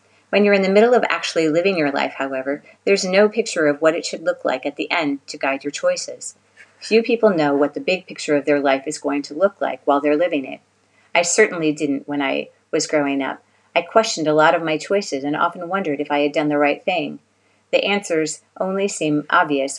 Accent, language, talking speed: American, English, 230 wpm